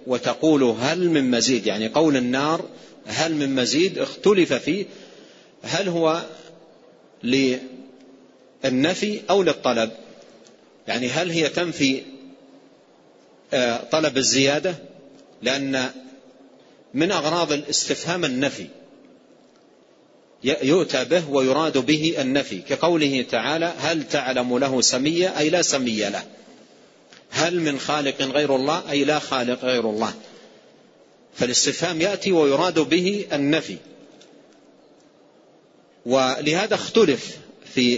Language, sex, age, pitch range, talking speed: Arabic, male, 40-59, 130-165 Hz, 95 wpm